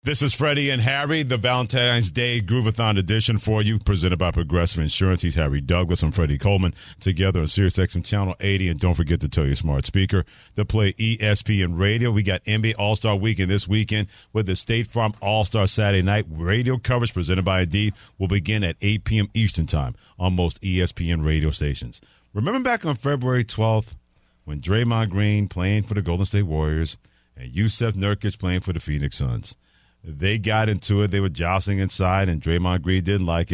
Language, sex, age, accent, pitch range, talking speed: English, male, 50-69, American, 90-110 Hz, 190 wpm